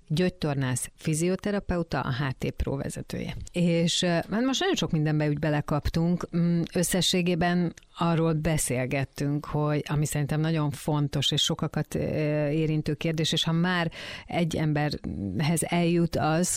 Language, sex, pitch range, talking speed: English, female, 145-165 Hz, 110 wpm